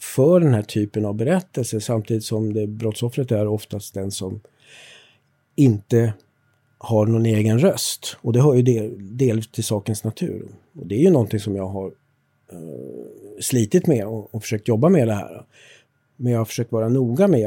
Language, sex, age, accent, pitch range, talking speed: Swedish, male, 50-69, native, 110-135 Hz, 180 wpm